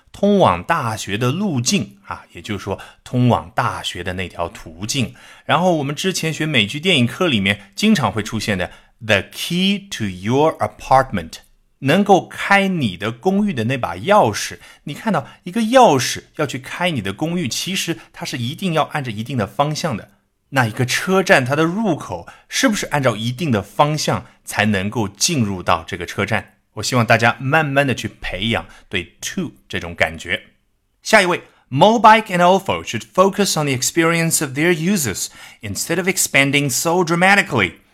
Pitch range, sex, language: 105-170 Hz, male, Chinese